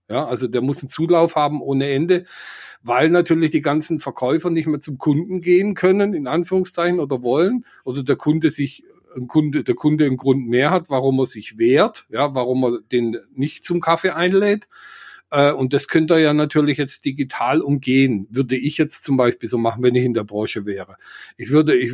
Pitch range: 135-170 Hz